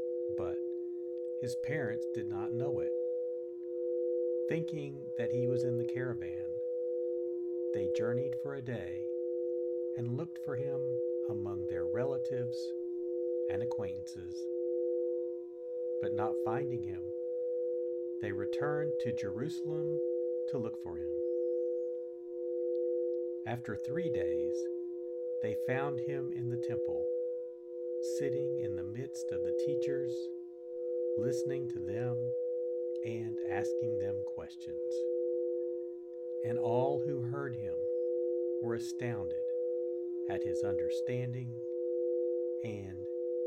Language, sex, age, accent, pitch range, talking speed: English, male, 50-69, American, 115-165 Hz, 100 wpm